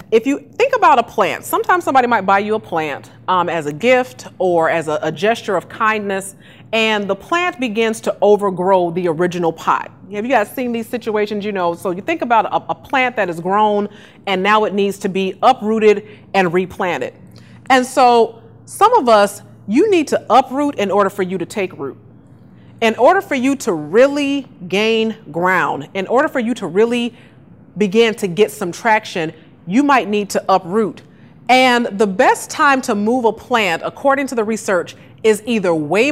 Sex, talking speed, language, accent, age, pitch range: female, 190 wpm, English, American, 30-49, 190-255 Hz